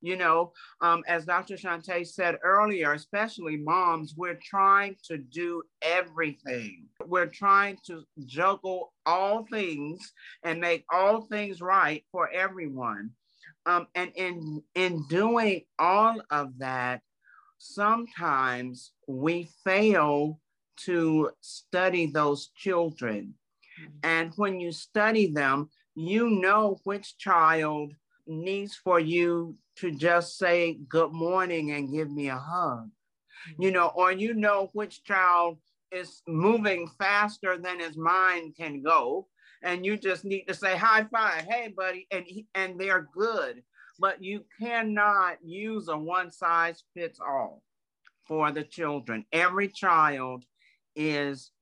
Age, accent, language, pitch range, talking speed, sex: 50-69, American, English, 155-195 Hz, 120 wpm, male